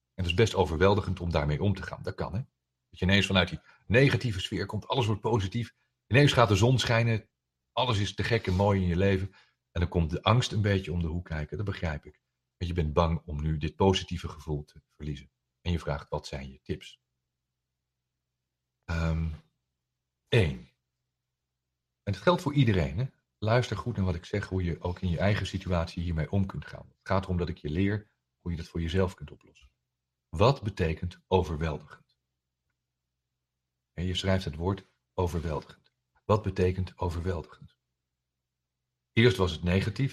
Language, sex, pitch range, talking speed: Dutch, male, 65-100 Hz, 185 wpm